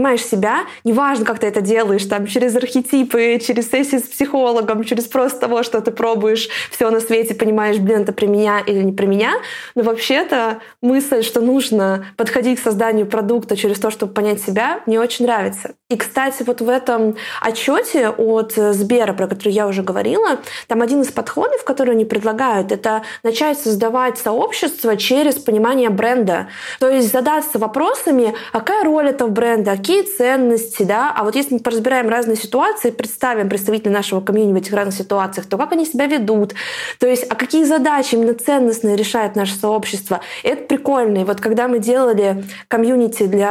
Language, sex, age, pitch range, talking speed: Russian, female, 20-39, 220-265 Hz, 175 wpm